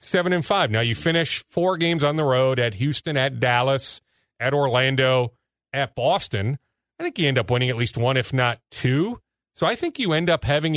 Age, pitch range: 40-59, 120-160 Hz